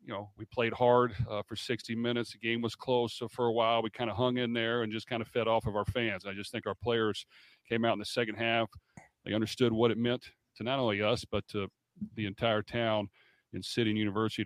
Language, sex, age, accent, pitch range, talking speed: English, male, 40-59, American, 100-115 Hz, 255 wpm